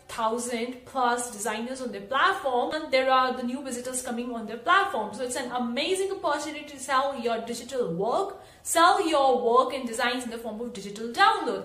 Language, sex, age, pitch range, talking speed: English, female, 30-49, 235-290 Hz, 190 wpm